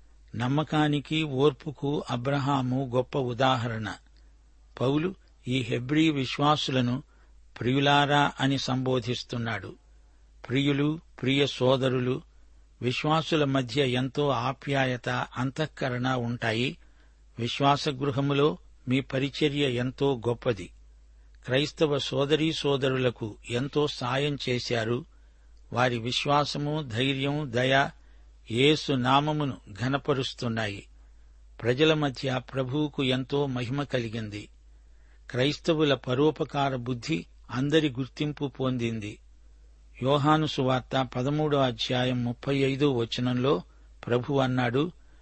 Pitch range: 115-145 Hz